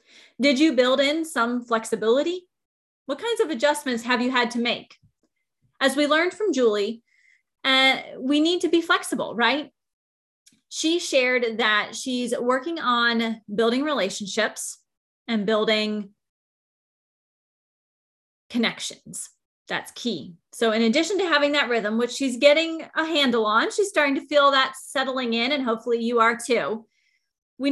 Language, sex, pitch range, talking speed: English, female, 225-290 Hz, 145 wpm